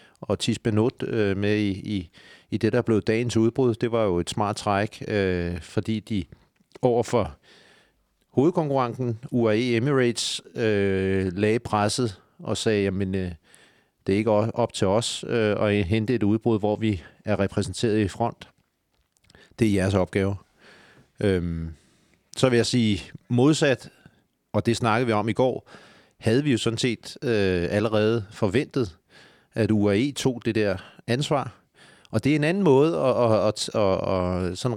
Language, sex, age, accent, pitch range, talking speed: Danish, male, 40-59, native, 100-120 Hz, 155 wpm